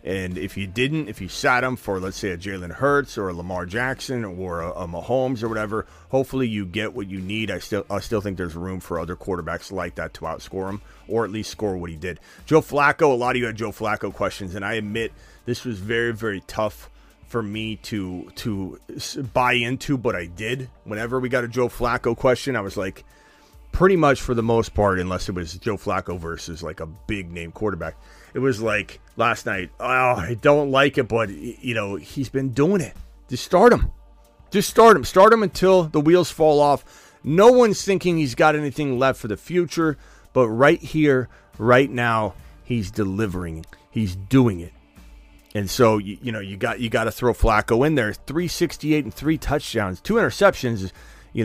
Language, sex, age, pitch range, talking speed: English, male, 30-49, 95-130 Hz, 205 wpm